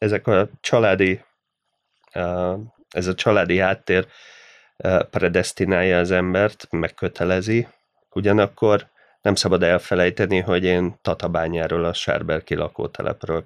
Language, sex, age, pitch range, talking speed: Hungarian, male, 30-49, 85-95 Hz, 95 wpm